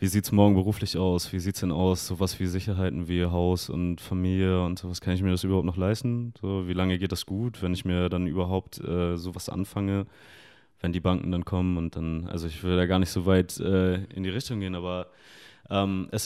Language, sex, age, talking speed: German, male, 20-39, 235 wpm